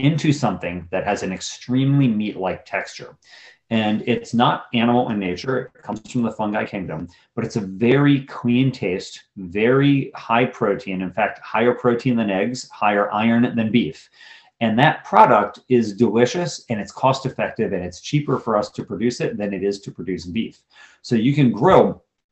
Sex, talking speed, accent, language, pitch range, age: male, 180 wpm, American, English, 105-130 Hz, 30-49